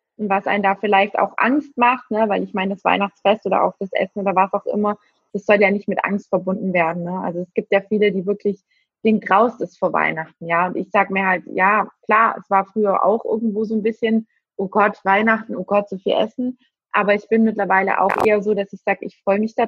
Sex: female